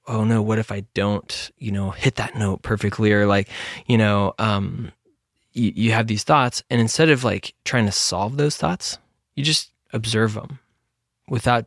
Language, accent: English, American